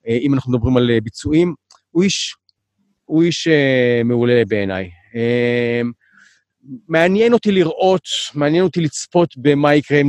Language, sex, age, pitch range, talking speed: Hebrew, male, 40-59, 110-150 Hz, 105 wpm